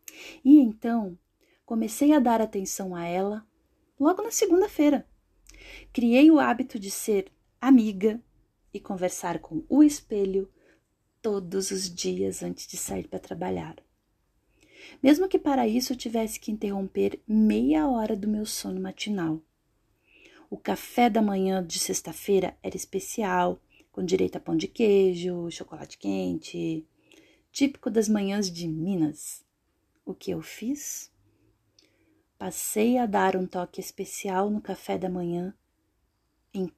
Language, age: Portuguese, 30-49